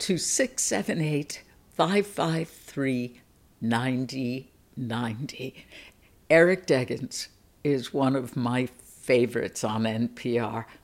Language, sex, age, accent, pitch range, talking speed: English, female, 60-79, American, 130-175 Hz, 60 wpm